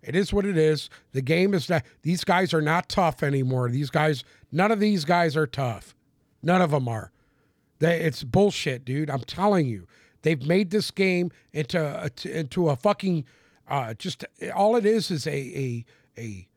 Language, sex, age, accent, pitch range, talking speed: English, male, 50-69, American, 140-195 Hz, 180 wpm